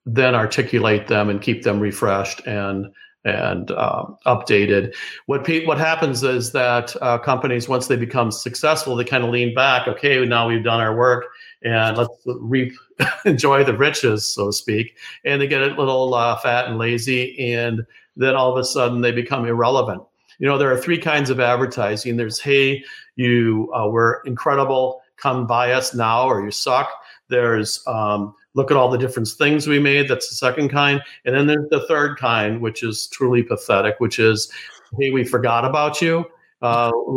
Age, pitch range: 50-69, 115-135 Hz